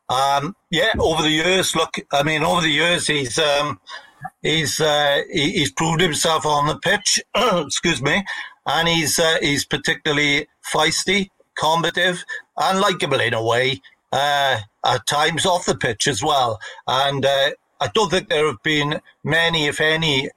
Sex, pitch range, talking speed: male, 120-155 Hz, 155 wpm